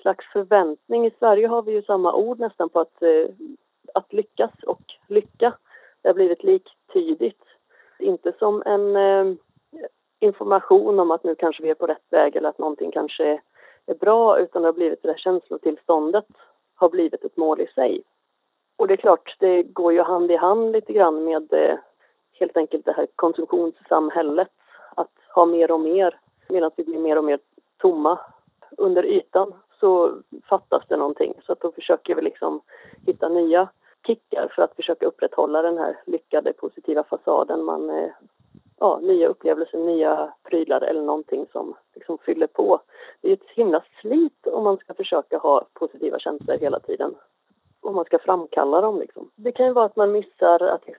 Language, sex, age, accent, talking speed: Swedish, female, 30-49, native, 170 wpm